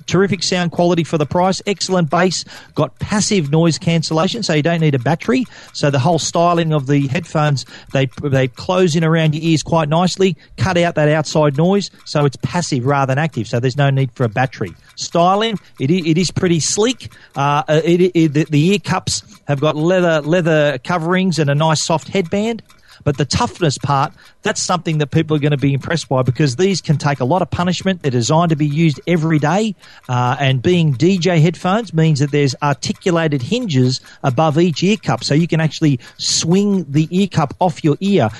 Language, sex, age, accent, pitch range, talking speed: English, male, 40-59, Australian, 140-175 Hz, 200 wpm